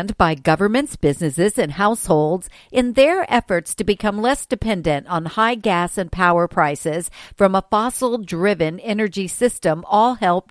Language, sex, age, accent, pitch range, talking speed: English, female, 50-69, American, 170-230 Hz, 145 wpm